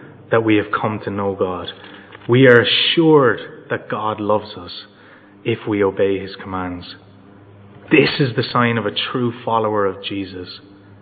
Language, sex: English, male